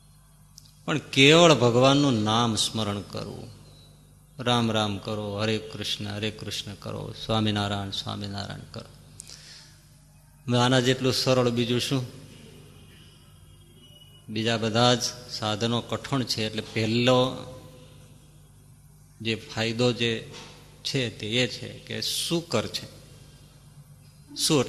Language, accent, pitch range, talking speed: Gujarati, native, 115-145 Hz, 80 wpm